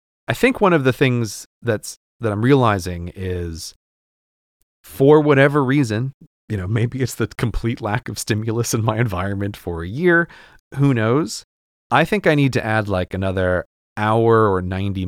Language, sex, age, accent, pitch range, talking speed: English, male, 30-49, American, 95-130 Hz, 165 wpm